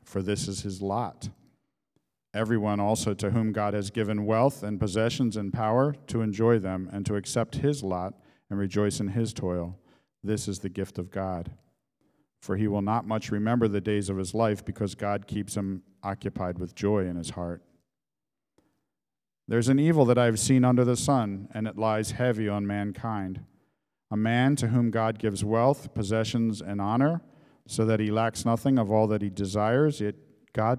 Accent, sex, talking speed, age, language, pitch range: American, male, 185 wpm, 50-69, English, 100-120 Hz